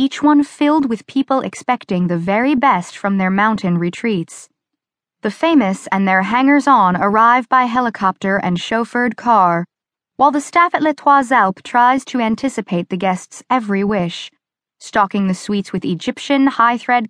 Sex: female